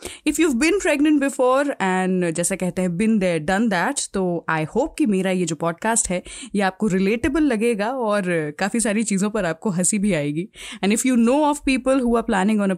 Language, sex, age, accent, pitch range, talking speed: Hindi, female, 20-39, native, 190-270 Hz, 200 wpm